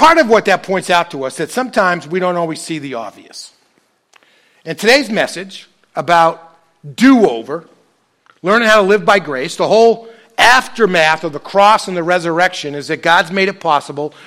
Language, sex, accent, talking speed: English, male, American, 180 wpm